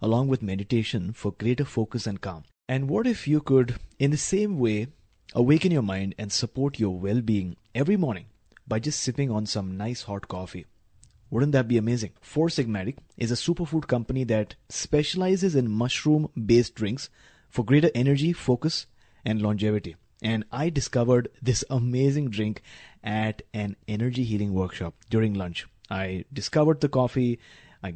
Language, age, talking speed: English, 30-49, 155 wpm